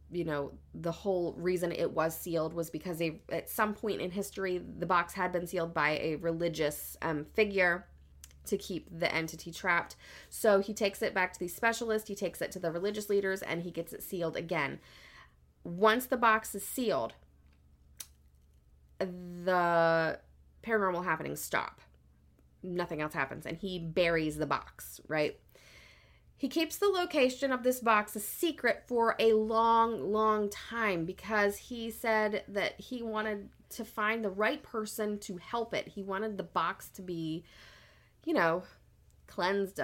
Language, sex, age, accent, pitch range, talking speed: English, female, 30-49, American, 155-210 Hz, 160 wpm